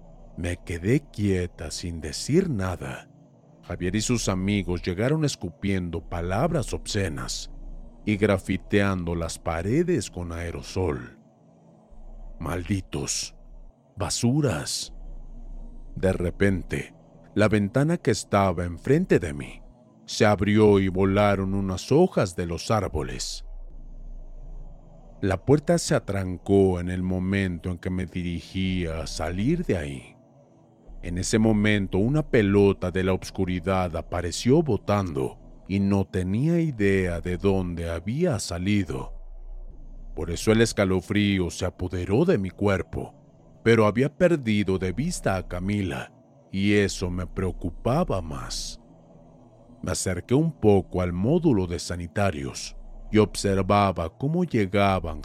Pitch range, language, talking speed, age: 85-110 Hz, Spanish, 115 wpm, 40-59